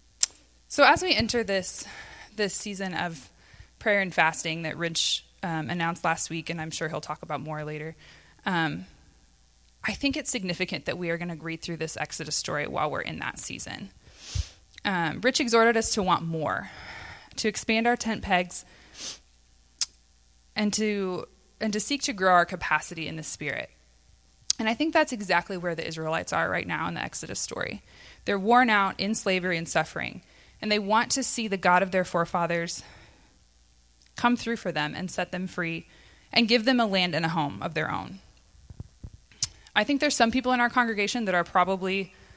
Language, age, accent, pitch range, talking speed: English, 20-39, American, 165-220 Hz, 185 wpm